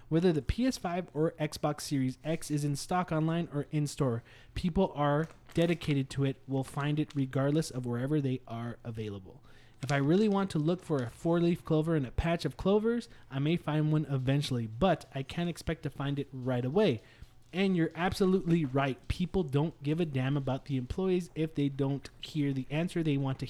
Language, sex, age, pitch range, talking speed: English, male, 20-39, 135-170 Hz, 195 wpm